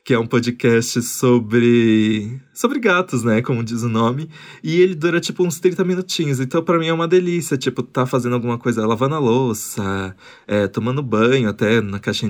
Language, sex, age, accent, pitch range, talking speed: Portuguese, male, 20-39, Brazilian, 120-155 Hz, 185 wpm